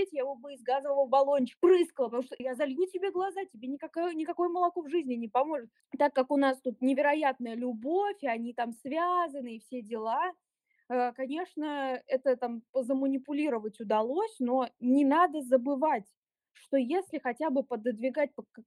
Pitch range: 235-290 Hz